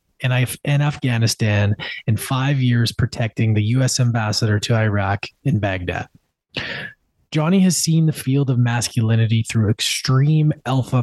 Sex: male